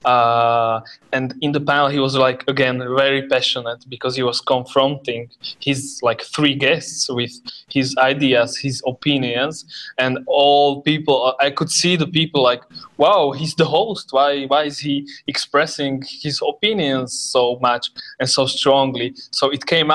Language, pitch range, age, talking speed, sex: English, 130-150 Hz, 20-39, 155 wpm, male